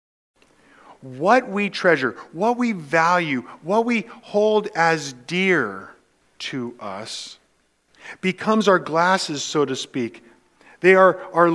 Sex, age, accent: male, 50-69, American